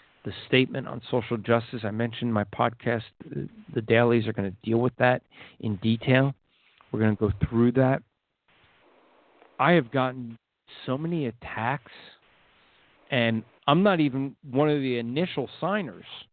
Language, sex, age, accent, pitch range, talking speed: English, male, 50-69, American, 115-145 Hz, 145 wpm